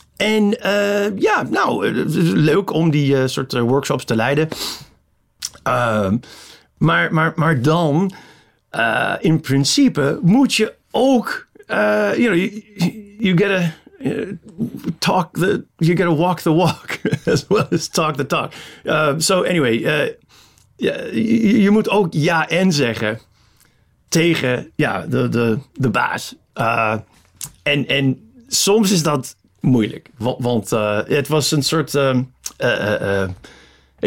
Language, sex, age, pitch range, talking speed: Dutch, male, 40-59, 125-180 Hz, 135 wpm